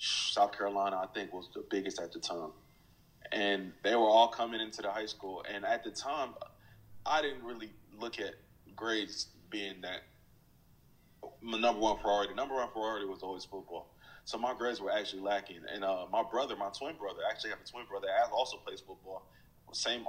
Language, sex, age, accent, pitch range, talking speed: English, male, 20-39, American, 100-110 Hz, 185 wpm